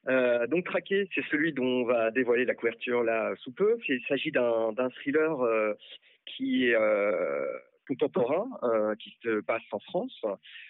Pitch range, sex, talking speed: 115-155 Hz, male, 170 wpm